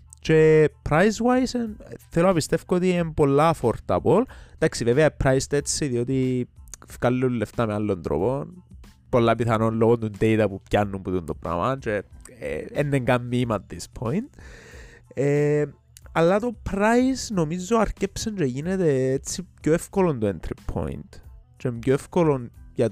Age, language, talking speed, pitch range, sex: 20-39, Greek, 135 wpm, 105-160 Hz, male